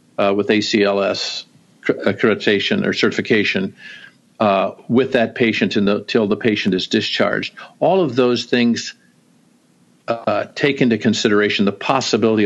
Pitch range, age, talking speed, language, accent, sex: 105-120 Hz, 50-69, 125 wpm, English, American, male